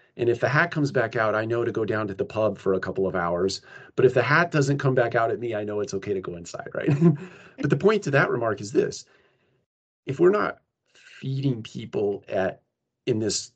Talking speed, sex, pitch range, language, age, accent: 240 wpm, male, 105-135 Hz, English, 40-59, American